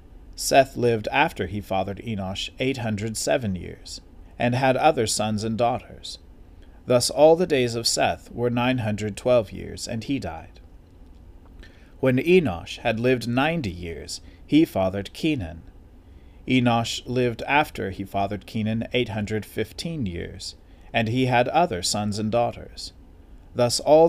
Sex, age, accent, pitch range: male, 40-59, American, 90-125 Hz